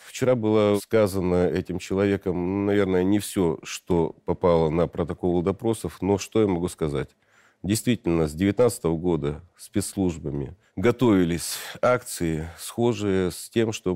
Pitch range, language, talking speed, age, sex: 85-110 Hz, Russian, 125 wpm, 40-59, male